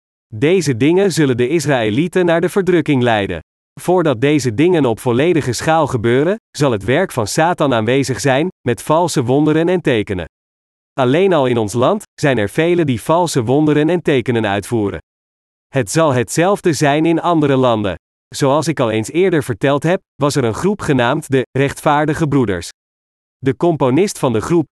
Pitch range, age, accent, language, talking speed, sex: 120-165 Hz, 40-59, Dutch, Dutch, 165 wpm, male